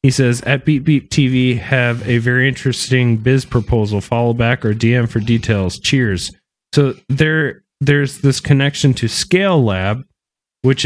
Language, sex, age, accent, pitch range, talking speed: English, male, 20-39, American, 110-135 Hz, 155 wpm